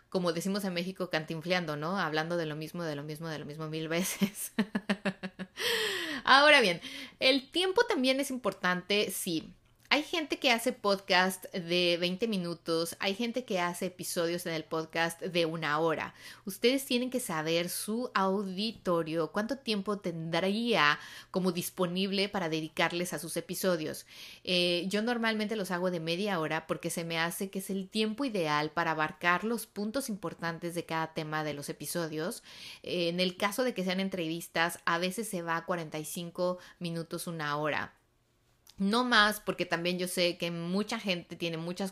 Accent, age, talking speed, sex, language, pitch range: Mexican, 30-49, 165 wpm, female, Spanish, 165-205 Hz